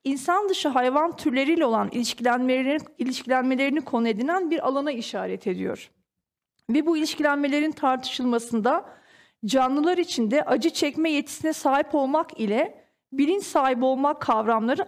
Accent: native